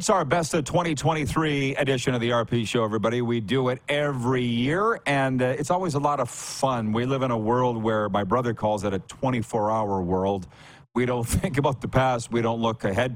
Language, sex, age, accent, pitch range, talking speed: English, male, 40-59, American, 110-135 Hz, 215 wpm